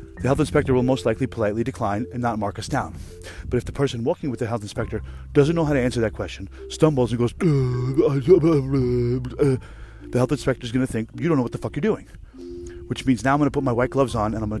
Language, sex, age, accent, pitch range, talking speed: English, male, 30-49, American, 100-130 Hz, 250 wpm